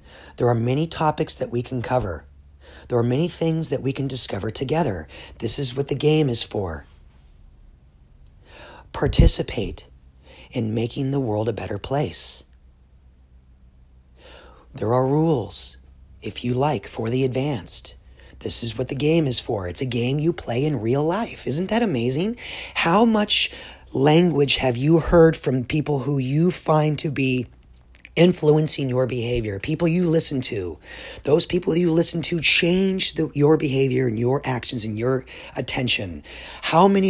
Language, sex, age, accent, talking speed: English, male, 40-59, American, 155 wpm